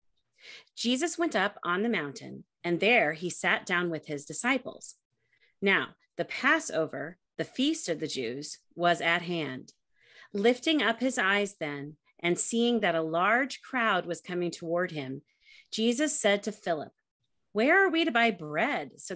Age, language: 40-59, English